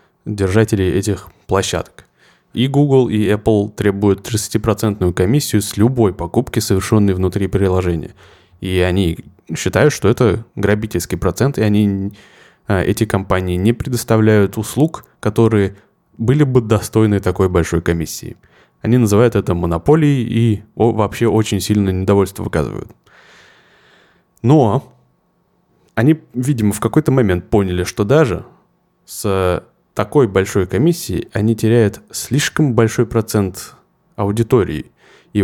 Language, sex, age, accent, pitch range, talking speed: Russian, male, 20-39, native, 95-115 Hz, 115 wpm